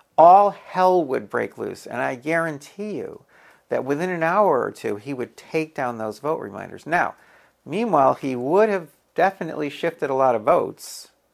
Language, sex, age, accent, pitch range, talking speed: English, male, 50-69, American, 125-180 Hz, 175 wpm